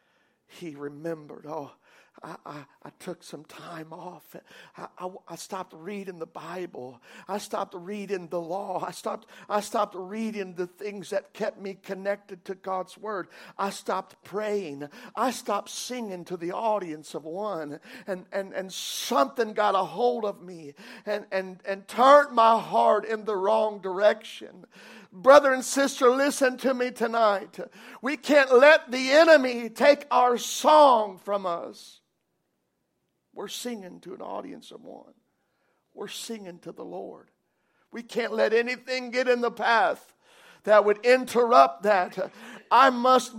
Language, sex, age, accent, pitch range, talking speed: English, male, 60-79, American, 185-250 Hz, 150 wpm